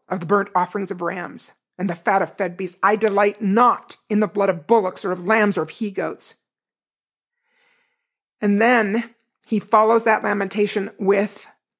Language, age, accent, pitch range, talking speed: English, 50-69, American, 200-265 Hz, 170 wpm